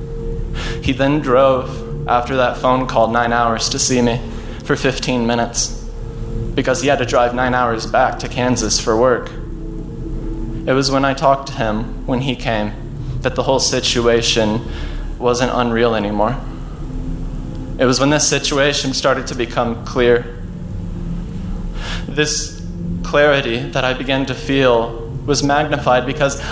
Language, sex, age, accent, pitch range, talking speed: English, male, 20-39, American, 115-135 Hz, 145 wpm